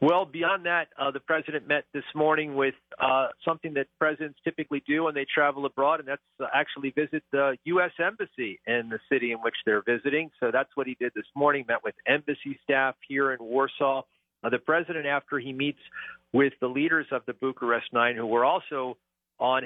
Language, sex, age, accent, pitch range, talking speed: English, male, 50-69, American, 125-150 Hz, 200 wpm